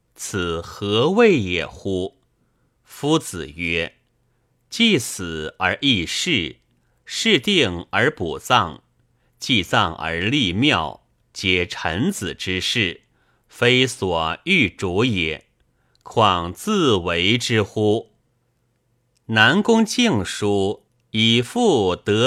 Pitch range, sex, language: 90-125 Hz, male, Chinese